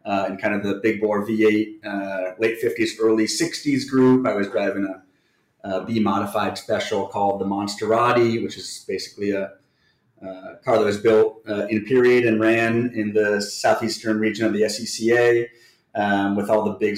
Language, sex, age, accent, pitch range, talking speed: English, male, 30-49, American, 100-115 Hz, 180 wpm